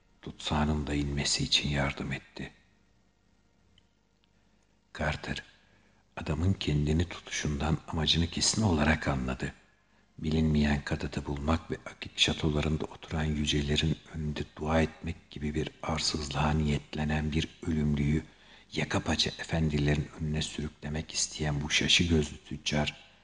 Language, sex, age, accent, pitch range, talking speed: Turkish, male, 60-79, native, 75-80 Hz, 105 wpm